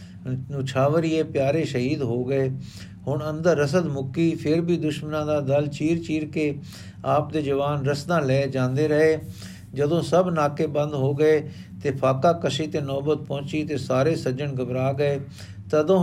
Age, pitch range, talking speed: 50-69, 130-160 Hz, 155 wpm